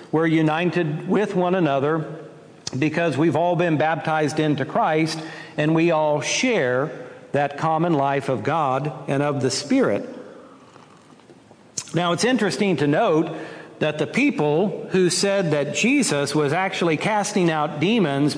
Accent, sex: American, male